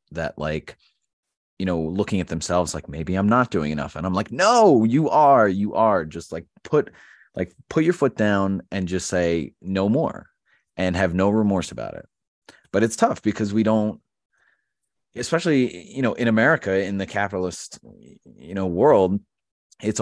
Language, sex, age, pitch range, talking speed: English, male, 30-49, 80-100 Hz, 175 wpm